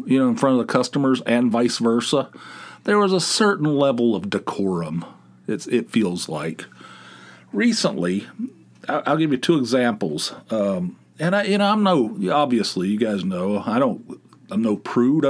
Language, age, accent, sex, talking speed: English, 50-69, American, male, 170 wpm